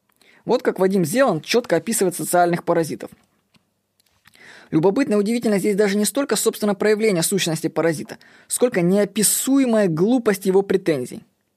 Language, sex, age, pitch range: Russian, female, 20-39, 175-235 Hz